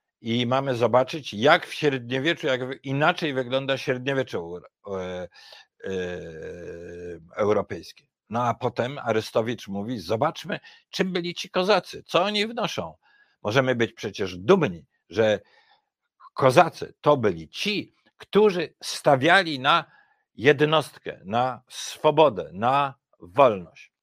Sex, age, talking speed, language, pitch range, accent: male, 50-69, 100 wpm, Polish, 95-135 Hz, native